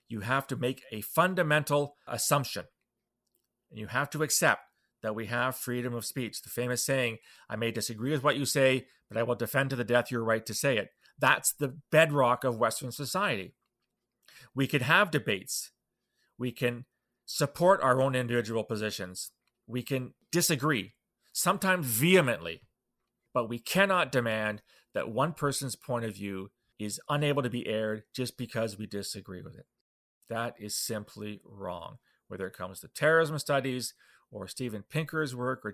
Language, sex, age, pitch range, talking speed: English, male, 30-49, 115-145 Hz, 165 wpm